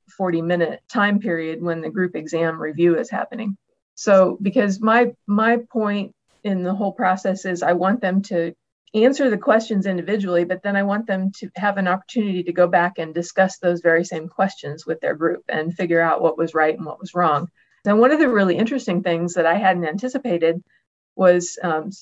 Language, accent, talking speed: English, American, 195 wpm